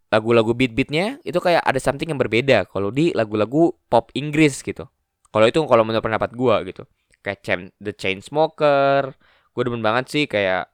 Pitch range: 105-155 Hz